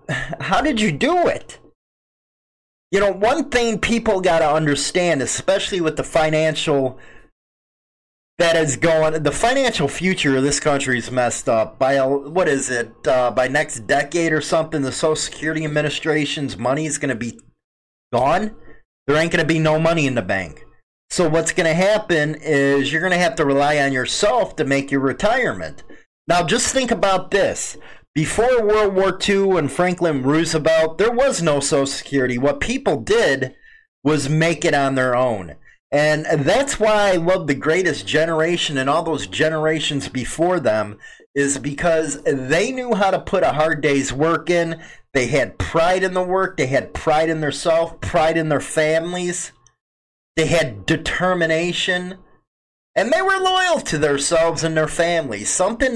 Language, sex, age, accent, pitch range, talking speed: English, male, 30-49, American, 140-180 Hz, 165 wpm